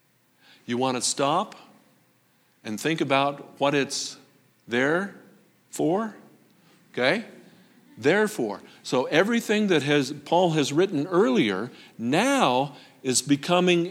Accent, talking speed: American, 105 wpm